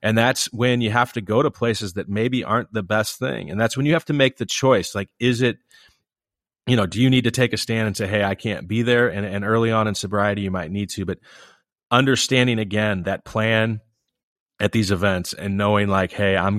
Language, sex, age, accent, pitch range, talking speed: English, male, 30-49, American, 95-115 Hz, 240 wpm